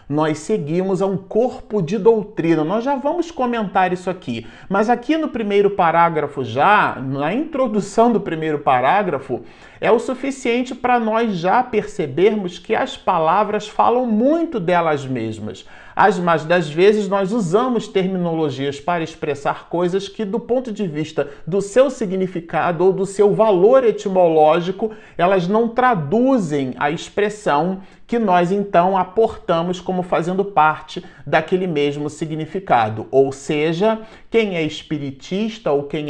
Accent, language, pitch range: Brazilian, Portuguese, 160-225 Hz